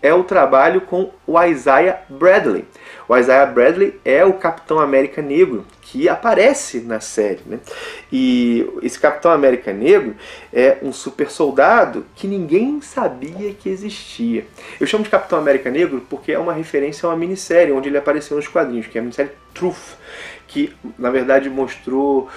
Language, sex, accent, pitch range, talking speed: Portuguese, male, Brazilian, 130-200 Hz, 165 wpm